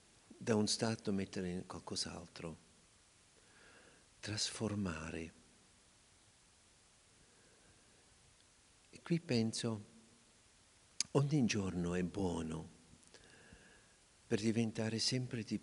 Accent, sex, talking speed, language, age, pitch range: native, male, 70 wpm, Italian, 50-69, 95-125 Hz